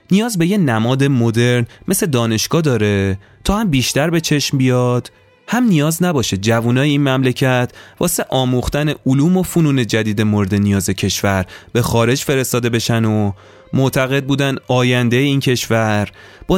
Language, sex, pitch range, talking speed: Persian, male, 110-140 Hz, 145 wpm